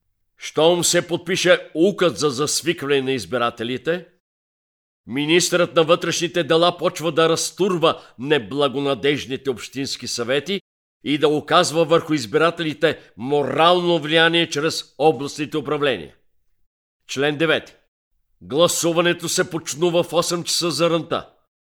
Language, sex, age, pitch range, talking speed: Bulgarian, male, 50-69, 130-170 Hz, 105 wpm